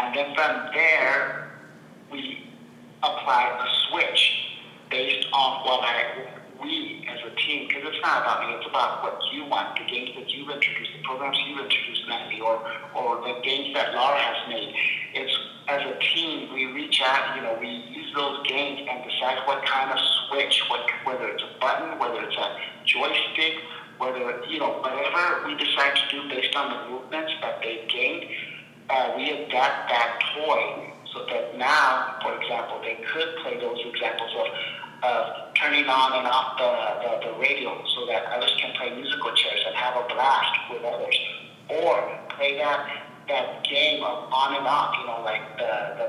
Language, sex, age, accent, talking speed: English, male, 50-69, American, 185 wpm